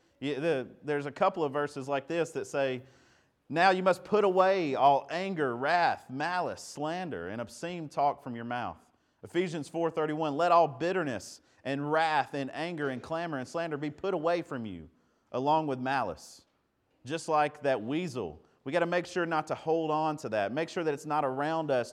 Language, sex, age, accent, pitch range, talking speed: English, male, 40-59, American, 135-175 Hz, 190 wpm